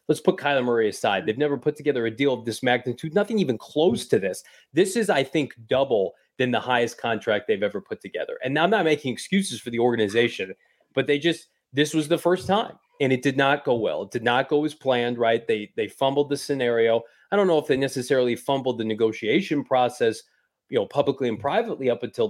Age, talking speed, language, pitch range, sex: 30-49, 225 wpm, English, 120-165 Hz, male